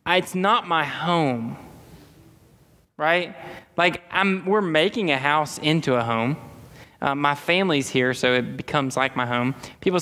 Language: English